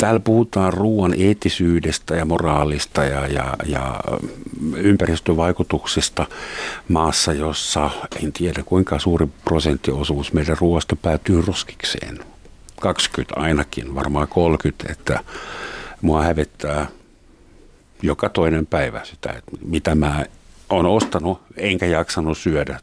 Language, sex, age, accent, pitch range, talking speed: Finnish, male, 60-79, native, 80-105 Hz, 105 wpm